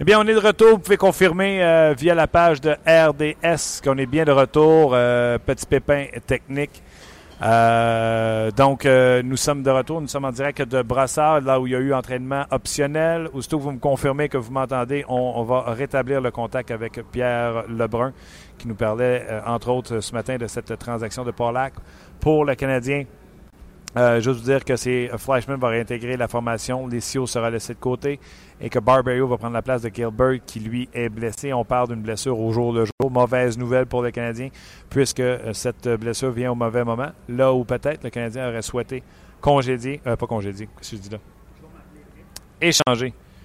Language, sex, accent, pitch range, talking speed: French, male, Canadian, 115-135 Hz, 205 wpm